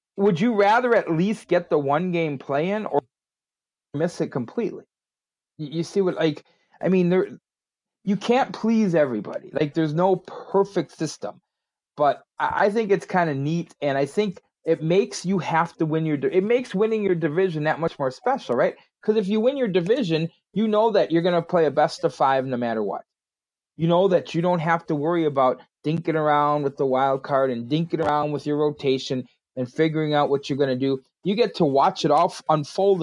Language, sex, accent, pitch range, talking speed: English, male, American, 145-195 Hz, 205 wpm